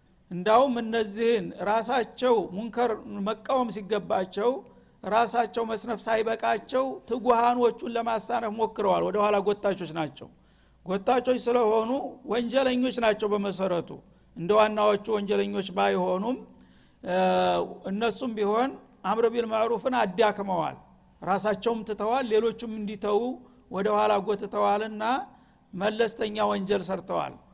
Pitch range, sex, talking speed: 205-235 Hz, male, 80 wpm